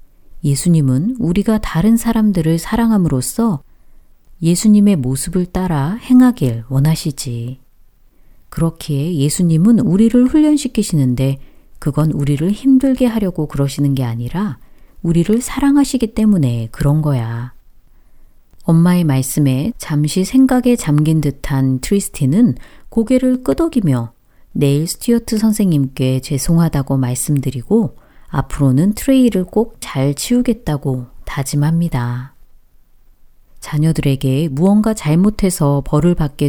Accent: native